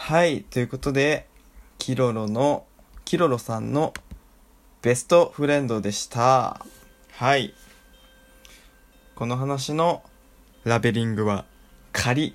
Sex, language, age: male, Japanese, 20-39